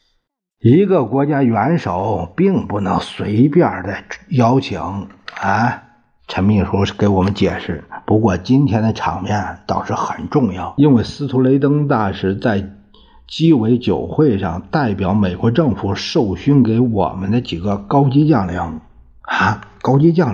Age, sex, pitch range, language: 50-69, male, 95-130 Hz, Chinese